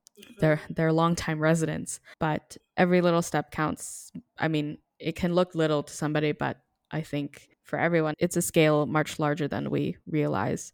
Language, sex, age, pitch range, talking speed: English, female, 10-29, 155-200 Hz, 170 wpm